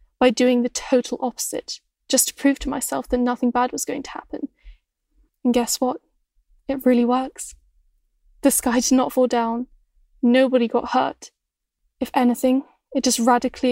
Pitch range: 240-265 Hz